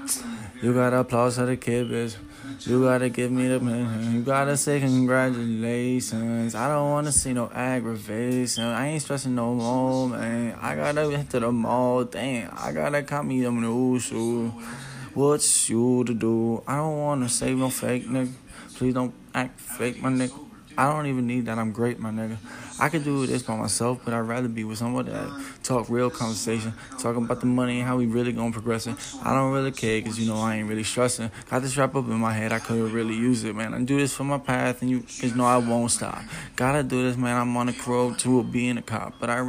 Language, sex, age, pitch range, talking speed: English, male, 20-39, 115-130 Hz, 235 wpm